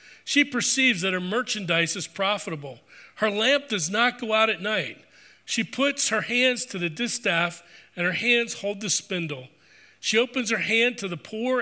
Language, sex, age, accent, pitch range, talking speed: English, male, 40-59, American, 165-215 Hz, 180 wpm